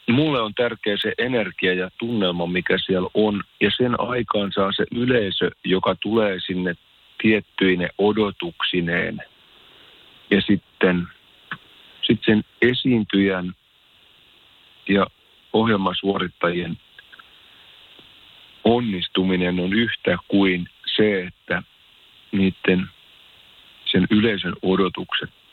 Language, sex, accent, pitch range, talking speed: Finnish, male, native, 90-110 Hz, 90 wpm